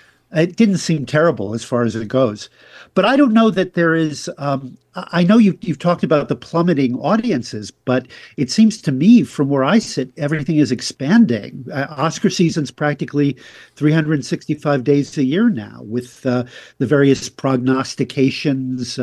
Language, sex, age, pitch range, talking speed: English, male, 50-69, 135-175 Hz, 165 wpm